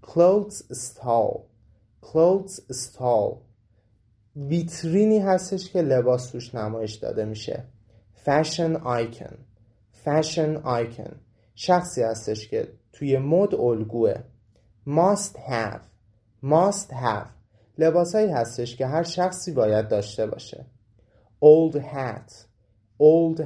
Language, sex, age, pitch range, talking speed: Persian, male, 30-49, 110-155 Hz, 85 wpm